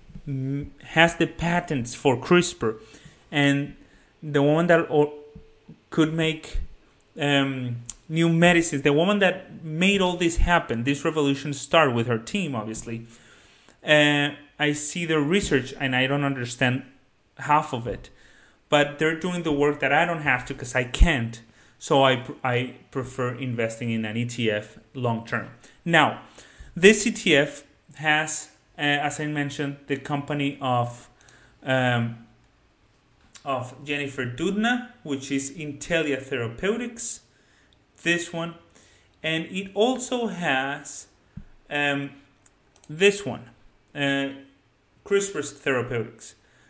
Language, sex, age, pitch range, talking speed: English, male, 30-49, 125-160 Hz, 120 wpm